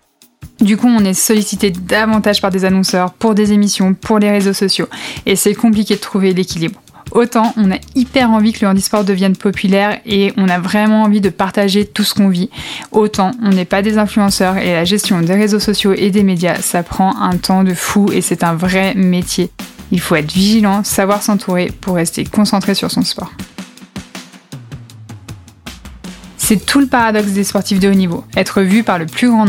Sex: female